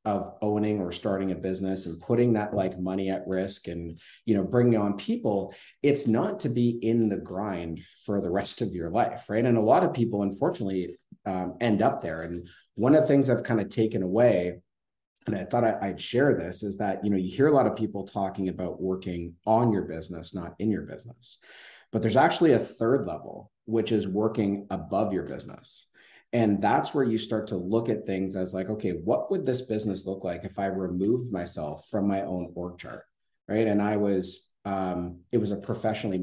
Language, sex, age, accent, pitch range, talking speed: English, male, 30-49, American, 90-110 Hz, 210 wpm